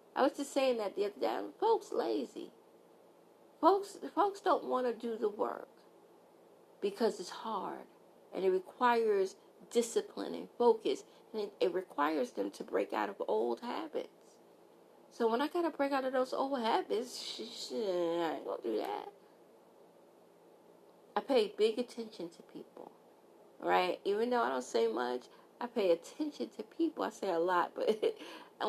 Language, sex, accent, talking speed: English, female, American, 170 wpm